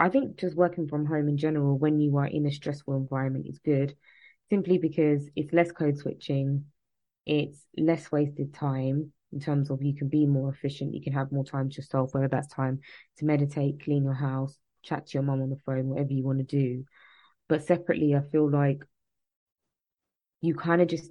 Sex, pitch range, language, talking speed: female, 140-155 Hz, English, 200 wpm